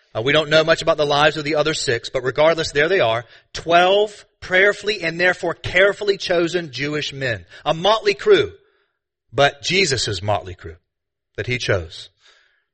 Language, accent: English, American